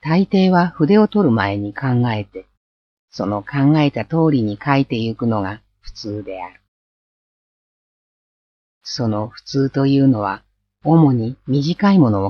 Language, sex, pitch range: Japanese, female, 105-140 Hz